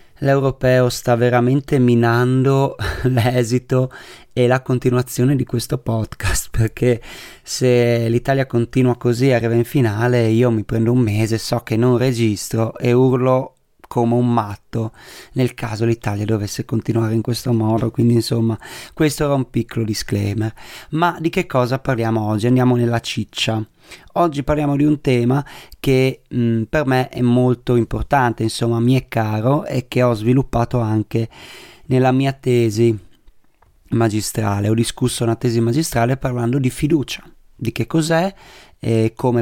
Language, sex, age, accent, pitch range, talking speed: Italian, male, 30-49, native, 115-135 Hz, 145 wpm